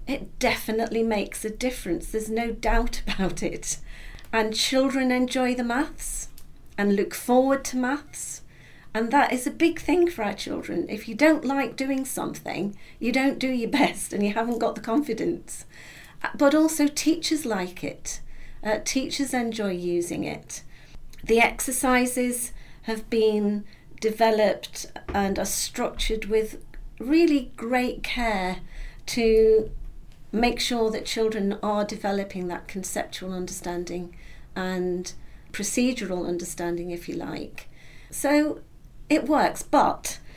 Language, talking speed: English, 130 wpm